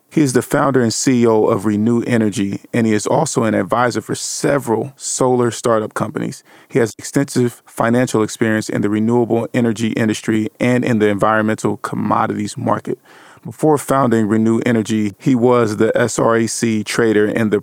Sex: male